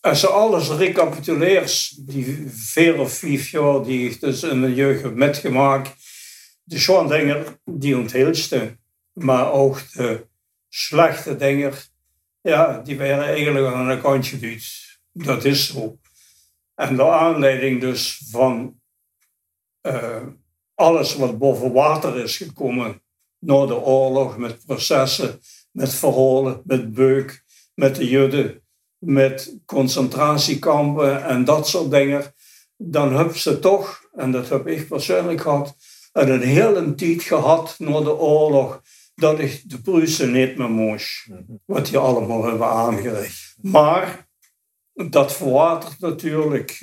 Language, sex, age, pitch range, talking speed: Dutch, male, 60-79, 130-150 Hz, 130 wpm